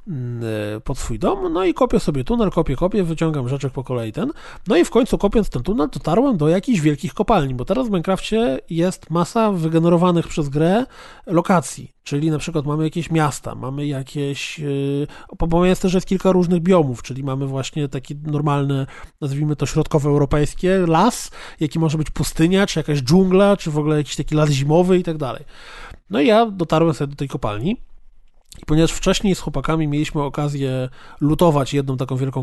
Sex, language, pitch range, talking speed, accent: male, Polish, 145-190 Hz, 180 wpm, native